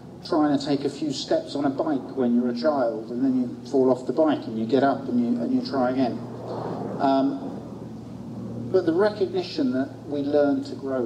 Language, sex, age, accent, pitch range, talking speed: English, male, 50-69, British, 125-170 Hz, 210 wpm